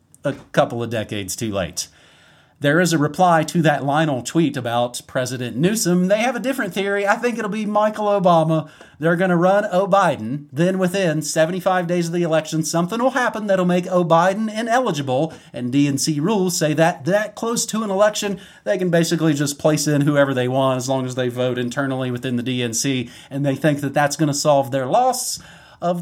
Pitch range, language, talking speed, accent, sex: 140-185 Hz, English, 205 wpm, American, male